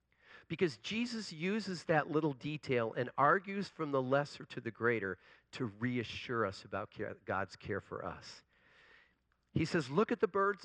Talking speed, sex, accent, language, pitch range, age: 160 wpm, male, American, English, 120-160 Hz, 50-69